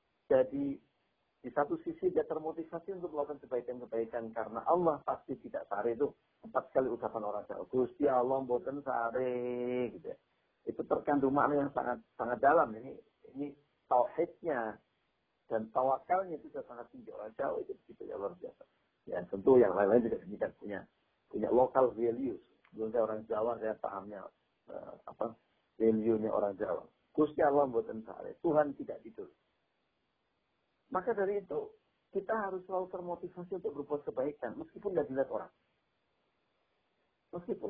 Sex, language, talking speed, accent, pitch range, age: male, Indonesian, 140 wpm, native, 110-175 Hz, 50-69